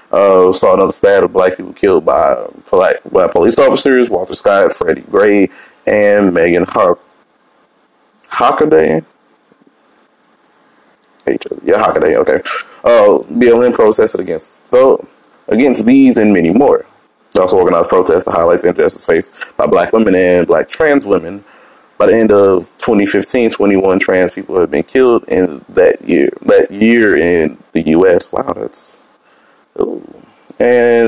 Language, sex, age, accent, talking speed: English, male, 20-39, American, 155 wpm